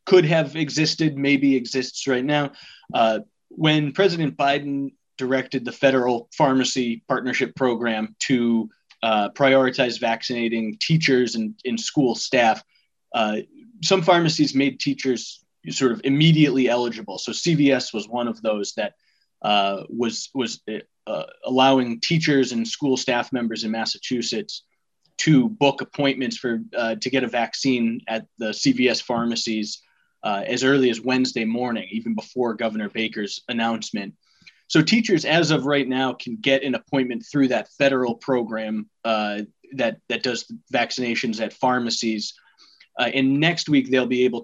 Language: English